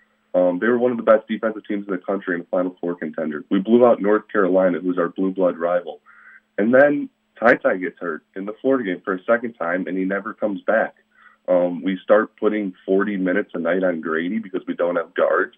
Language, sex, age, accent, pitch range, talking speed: English, male, 20-39, American, 90-115 Hz, 225 wpm